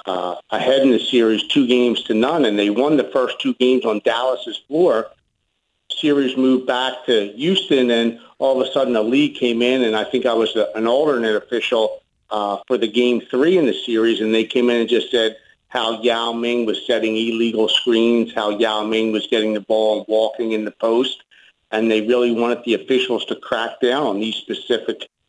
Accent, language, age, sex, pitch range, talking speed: American, English, 50-69, male, 110-130 Hz, 210 wpm